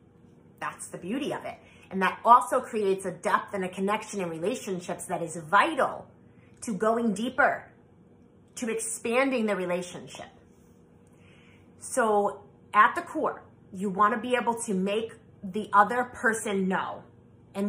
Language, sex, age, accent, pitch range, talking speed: English, female, 30-49, American, 185-235 Hz, 145 wpm